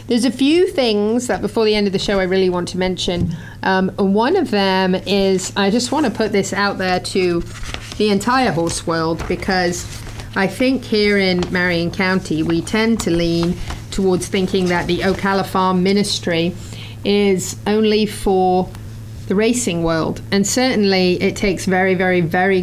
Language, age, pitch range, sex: English, 40-59, 170-200 Hz, female